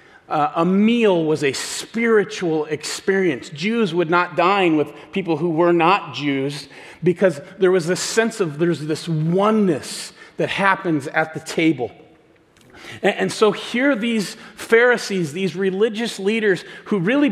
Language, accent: English, American